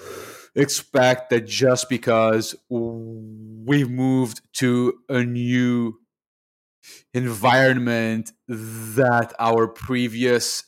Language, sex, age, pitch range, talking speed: English, male, 30-49, 115-130 Hz, 75 wpm